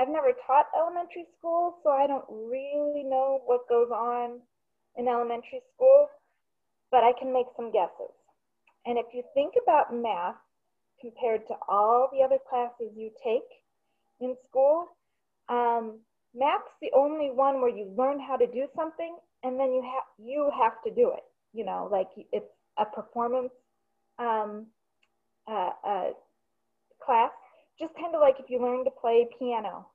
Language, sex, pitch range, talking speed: English, female, 225-285 Hz, 160 wpm